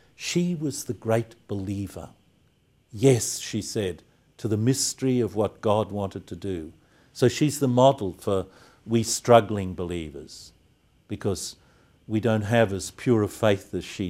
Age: 50-69